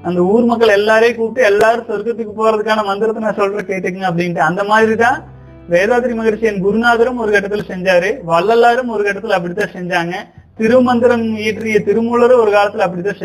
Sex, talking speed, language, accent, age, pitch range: male, 145 wpm, Tamil, native, 30-49, 185-230 Hz